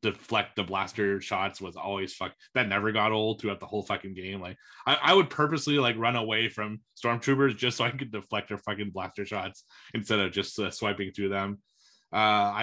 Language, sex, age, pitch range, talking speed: English, male, 30-49, 100-120 Hz, 205 wpm